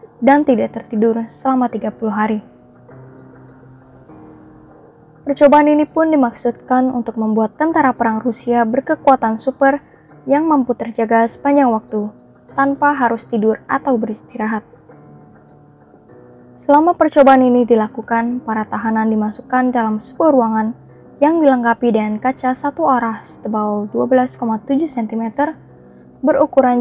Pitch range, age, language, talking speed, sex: 220-270 Hz, 20-39, Indonesian, 105 wpm, female